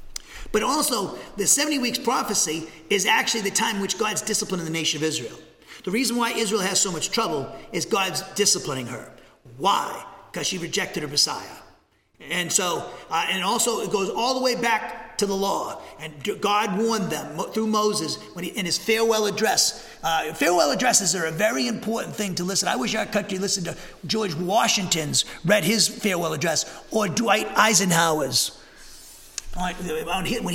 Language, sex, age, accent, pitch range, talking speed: English, male, 40-59, American, 180-225 Hz, 175 wpm